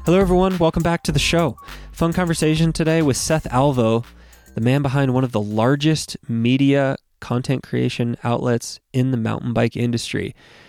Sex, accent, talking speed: male, American, 165 wpm